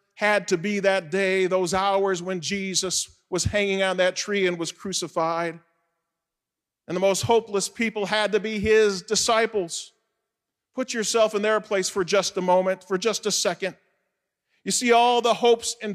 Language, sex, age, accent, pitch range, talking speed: English, male, 40-59, American, 190-235 Hz, 175 wpm